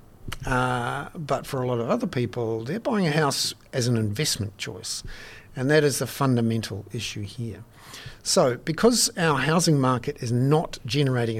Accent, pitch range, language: Australian, 115-140 Hz, English